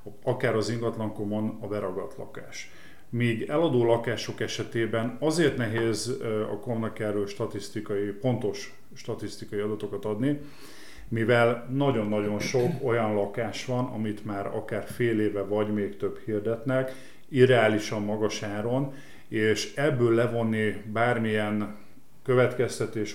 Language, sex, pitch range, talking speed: Hungarian, male, 105-120 Hz, 110 wpm